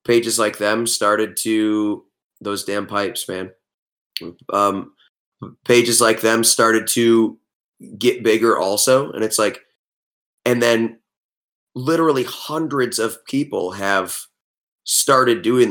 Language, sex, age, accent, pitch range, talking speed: English, male, 20-39, American, 105-120 Hz, 115 wpm